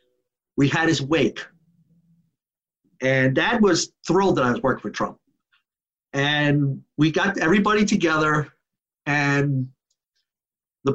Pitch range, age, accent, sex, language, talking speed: 140-185 Hz, 50-69, American, male, English, 115 wpm